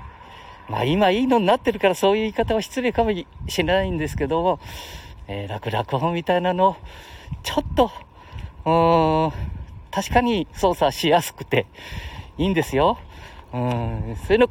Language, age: Japanese, 40-59